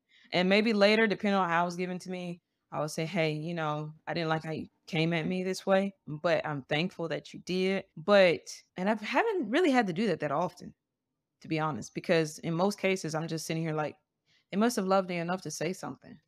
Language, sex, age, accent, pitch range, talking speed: English, female, 20-39, American, 160-190 Hz, 240 wpm